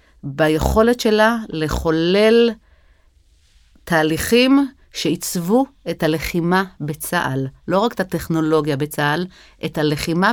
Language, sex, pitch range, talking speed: Hebrew, female, 155-210 Hz, 85 wpm